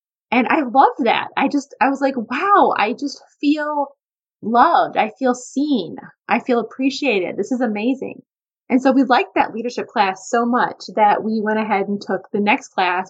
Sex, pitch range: female, 205-260 Hz